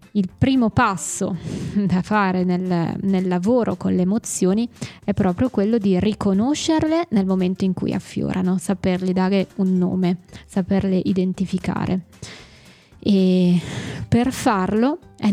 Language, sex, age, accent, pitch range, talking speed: Italian, female, 20-39, native, 190-240 Hz, 120 wpm